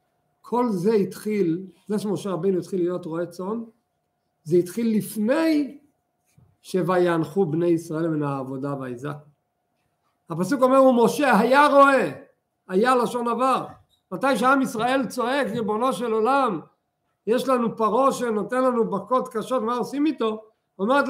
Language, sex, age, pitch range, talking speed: Hebrew, male, 50-69, 165-245 Hz, 130 wpm